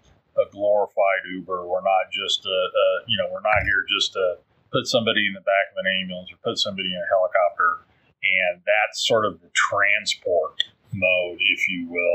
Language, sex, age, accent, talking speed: English, male, 40-59, American, 195 wpm